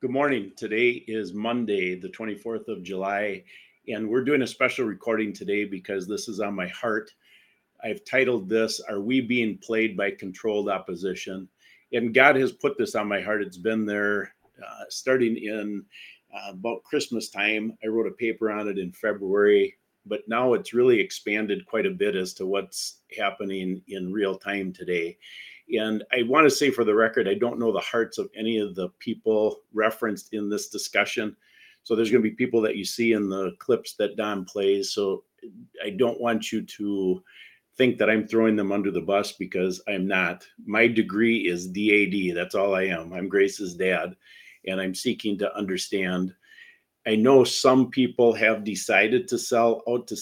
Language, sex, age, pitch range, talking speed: English, male, 50-69, 100-115 Hz, 185 wpm